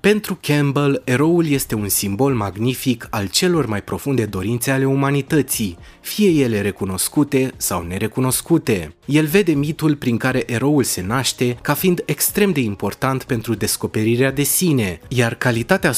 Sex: male